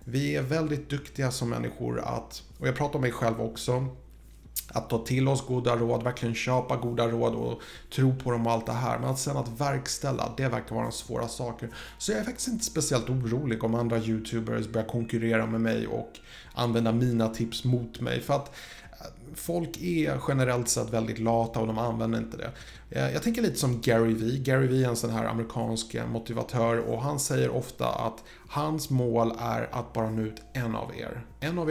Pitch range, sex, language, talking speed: 115-130 Hz, male, Swedish, 205 wpm